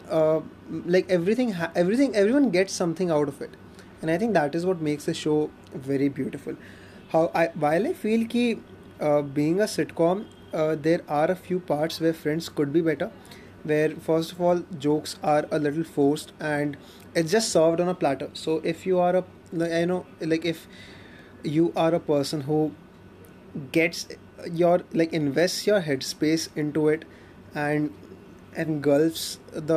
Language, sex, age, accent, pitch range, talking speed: Hindi, male, 20-39, native, 155-185 Hz, 175 wpm